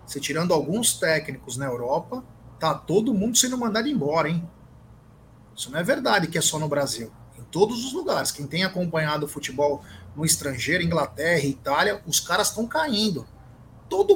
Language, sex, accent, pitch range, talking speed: Portuguese, male, Brazilian, 135-210 Hz, 170 wpm